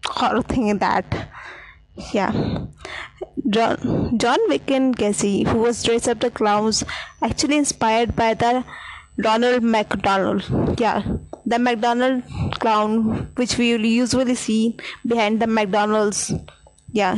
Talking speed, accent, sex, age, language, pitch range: 110 wpm, Indian, female, 20-39, English, 215-240 Hz